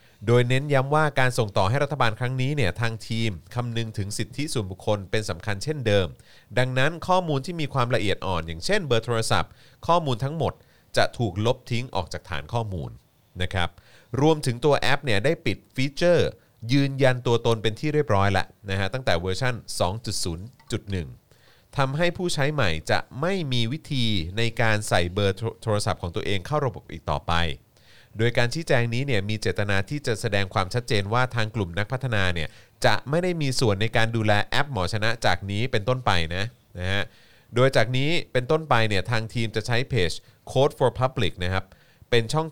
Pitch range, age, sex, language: 95-130 Hz, 30-49, male, Thai